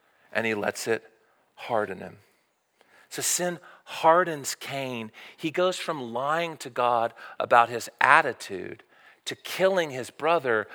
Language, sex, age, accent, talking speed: English, male, 40-59, American, 130 wpm